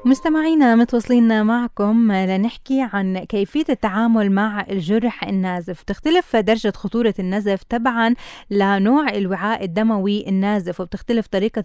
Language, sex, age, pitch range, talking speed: Arabic, female, 20-39, 195-235 Hz, 110 wpm